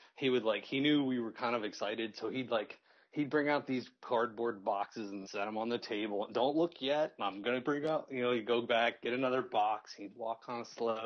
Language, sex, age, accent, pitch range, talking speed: English, male, 30-49, American, 105-125 Hz, 245 wpm